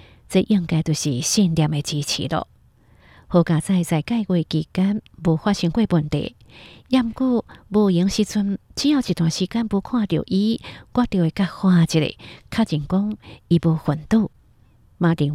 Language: Chinese